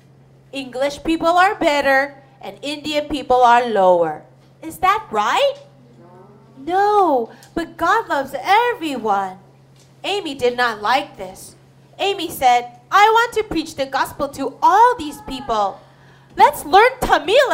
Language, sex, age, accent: Korean, female, 30-49, American